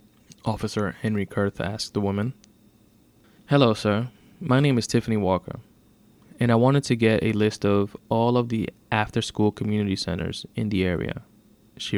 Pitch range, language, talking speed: 100-115 Hz, English, 155 wpm